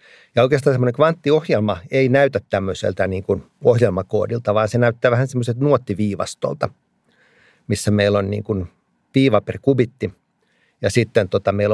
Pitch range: 100-115 Hz